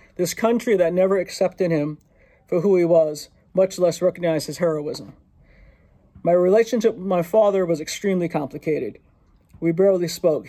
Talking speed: 150 wpm